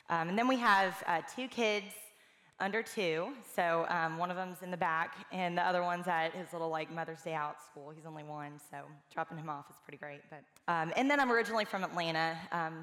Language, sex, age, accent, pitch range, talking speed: English, female, 20-39, American, 160-195 Hz, 230 wpm